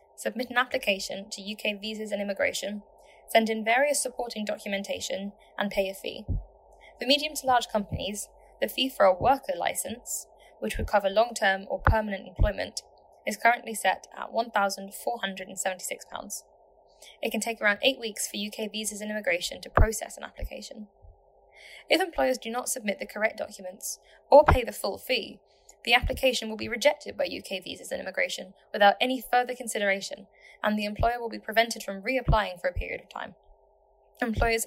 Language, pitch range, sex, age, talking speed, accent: English, 200-250 Hz, female, 10-29, 170 wpm, British